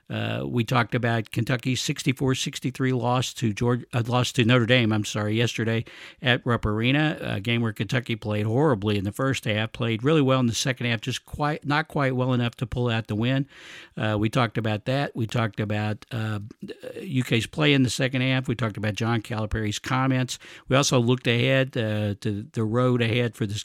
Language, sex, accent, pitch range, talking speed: English, male, American, 110-130 Hz, 205 wpm